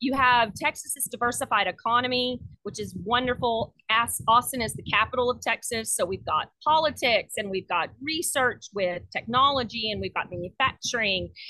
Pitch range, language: 220-285 Hz, English